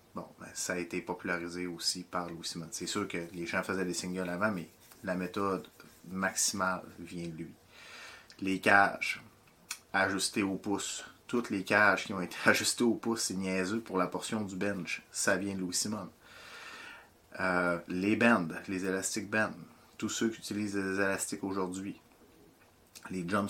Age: 30-49